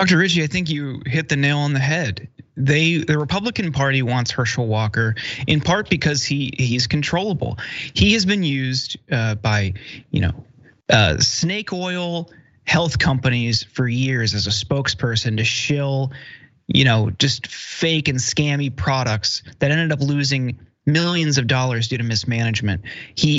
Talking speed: 160 wpm